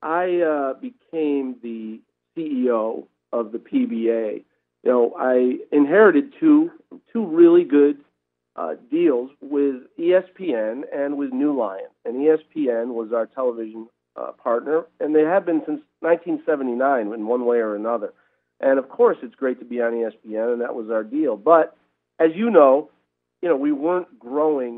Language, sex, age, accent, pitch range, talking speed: English, male, 50-69, American, 115-150 Hz, 155 wpm